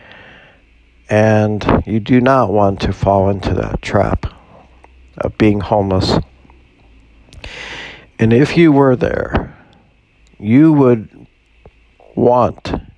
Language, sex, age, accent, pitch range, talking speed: English, male, 60-79, American, 90-120 Hz, 95 wpm